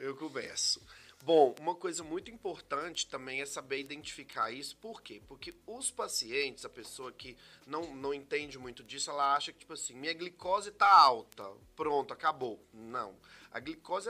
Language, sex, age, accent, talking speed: Portuguese, male, 30-49, Brazilian, 165 wpm